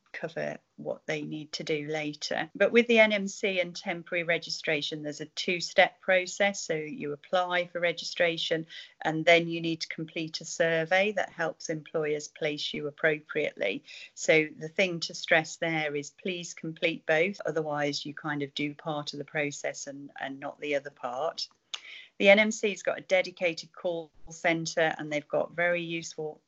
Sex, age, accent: female, 40-59, British